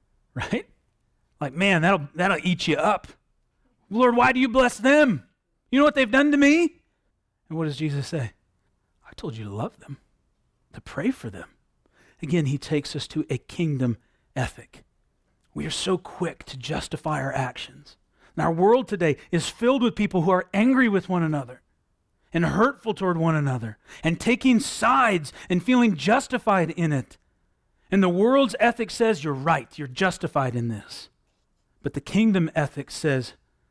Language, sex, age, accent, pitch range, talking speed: English, male, 40-59, American, 120-180 Hz, 170 wpm